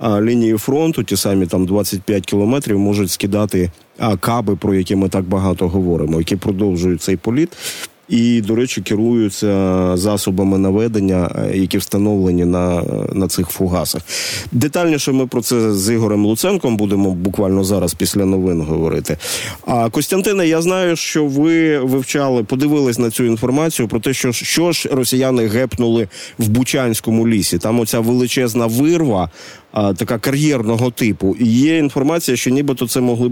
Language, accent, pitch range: Ukrainian, native, 100-125 Hz